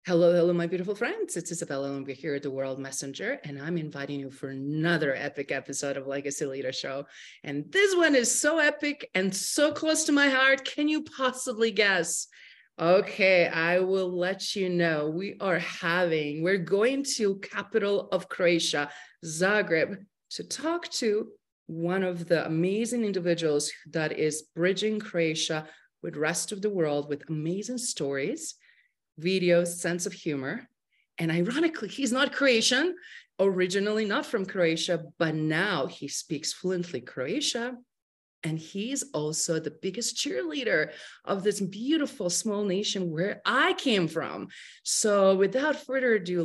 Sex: female